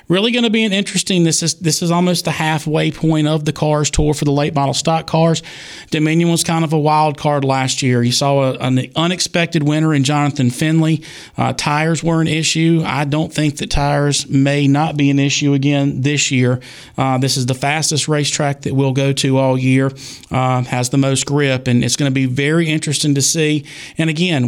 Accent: American